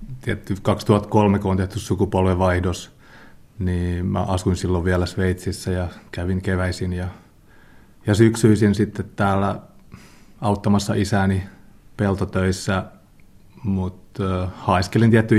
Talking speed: 100 wpm